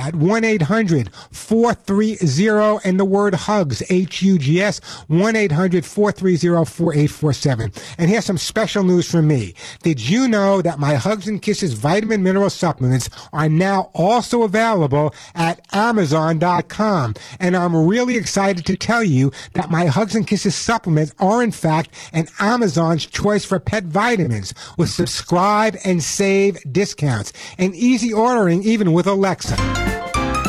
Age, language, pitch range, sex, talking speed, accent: 50-69, English, 130-185 Hz, male, 130 wpm, American